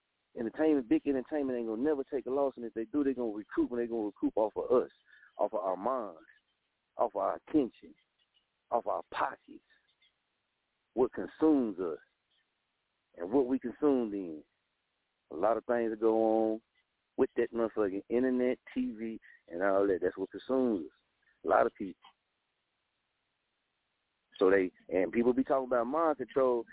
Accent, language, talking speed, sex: American, English, 170 wpm, male